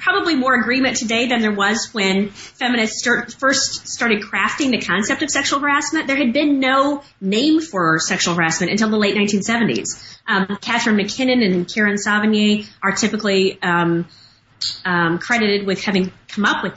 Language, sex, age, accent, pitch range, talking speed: English, female, 30-49, American, 180-230 Hz, 165 wpm